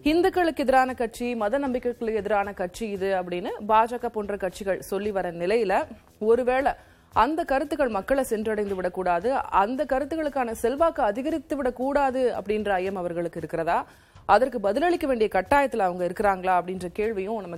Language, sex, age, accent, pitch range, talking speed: Tamil, female, 30-49, native, 195-275 Hz, 135 wpm